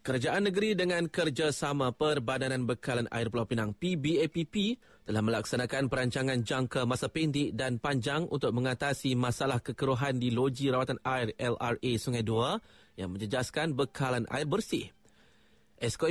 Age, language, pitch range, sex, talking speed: 30-49, Malay, 125-155 Hz, male, 130 wpm